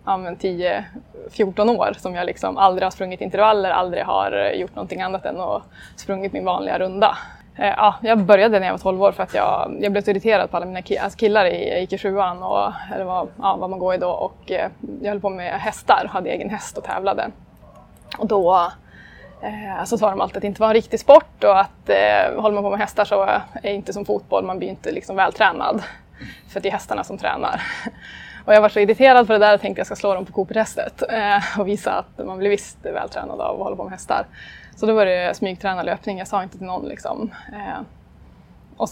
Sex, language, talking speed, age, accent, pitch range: female, Swedish, 230 wpm, 20-39, native, 190-215 Hz